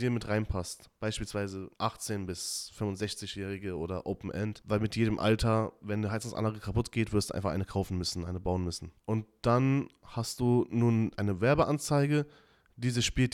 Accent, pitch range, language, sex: German, 105-130 Hz, German, male